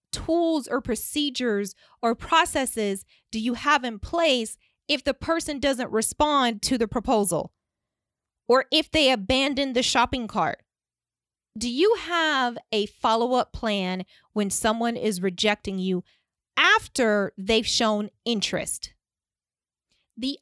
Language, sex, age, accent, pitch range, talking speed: English, female, 20-39, American, 200-255 Hz, 125 wpm